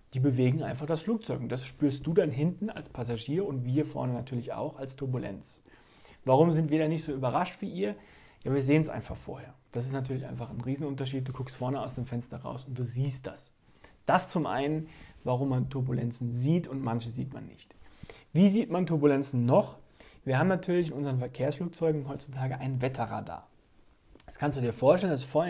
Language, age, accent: German, 30-49, German